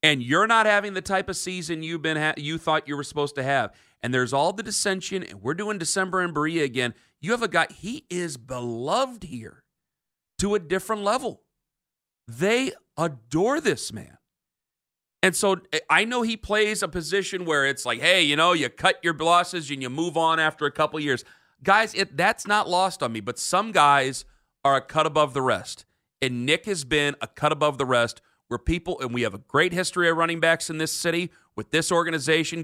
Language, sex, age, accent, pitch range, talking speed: English, male, 40-59, American, 135-185 Hz, 210 wpm